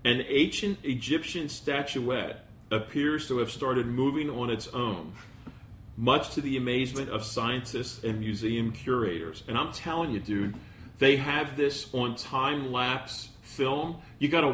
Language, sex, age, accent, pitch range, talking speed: English, male, 40-59, American, 115-135 Hz, 145 wpm